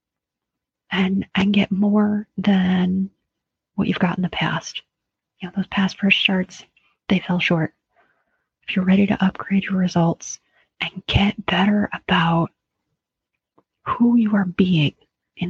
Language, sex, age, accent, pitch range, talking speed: English, female, 30-49, American, 185-215 Hz, 140 wpm